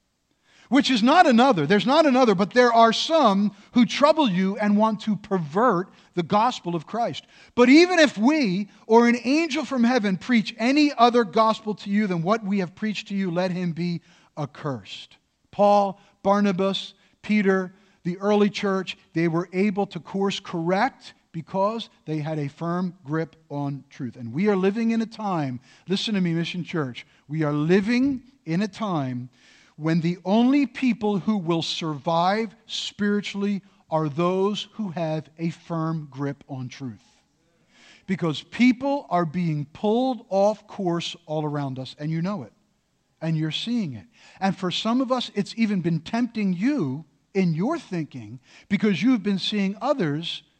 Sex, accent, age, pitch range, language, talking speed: male, American, 50-69, 165-230 Hz, English, 165 wpm